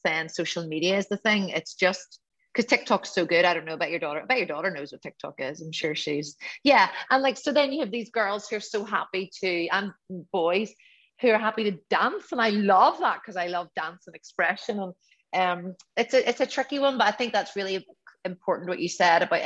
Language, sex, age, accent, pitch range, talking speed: English, female, 30-49, Irish, 170-200 Hz, 235 wpm